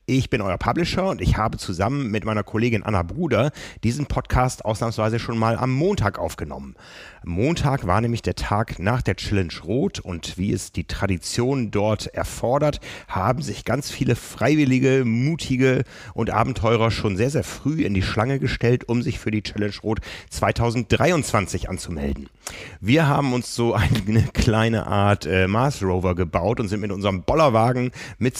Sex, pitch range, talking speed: male, 100-125 Hz, 165 wpm